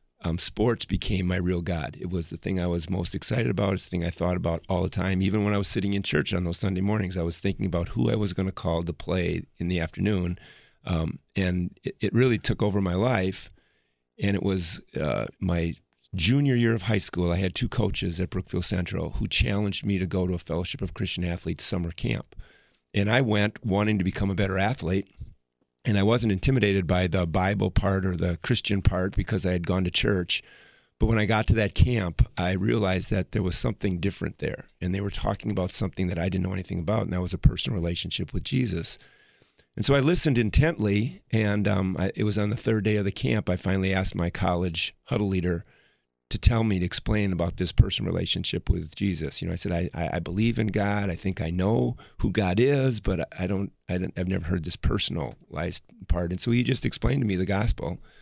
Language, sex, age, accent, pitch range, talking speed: English, male, 40-59, American, 90-105 Hz, 230 wpm